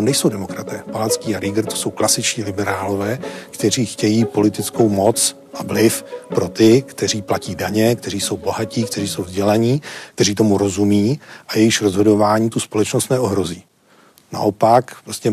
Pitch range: 105-115 Hz